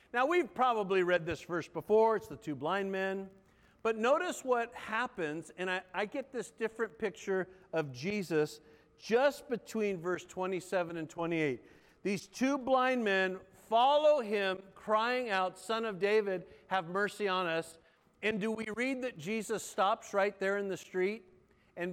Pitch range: 185-250 Hz